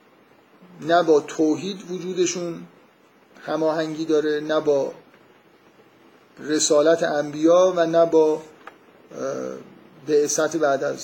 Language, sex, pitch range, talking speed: Persian, male, 145-170 Hz, 85 wpm